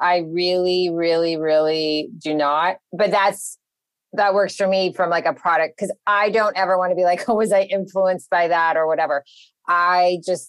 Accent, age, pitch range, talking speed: American, 30-49, 175-225 Hz, 195 wpm